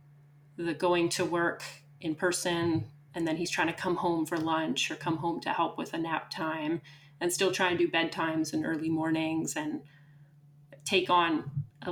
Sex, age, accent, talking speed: female, 30-49, American, 185 wpm